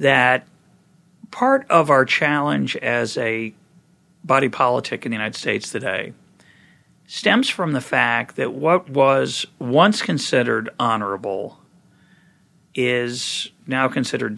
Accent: American